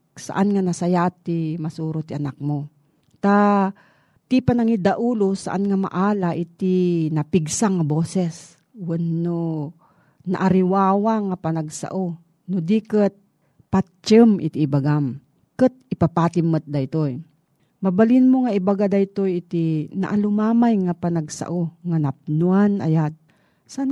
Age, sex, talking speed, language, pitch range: 40-59, female, 105 wpm, Filipino, 155-200 Hz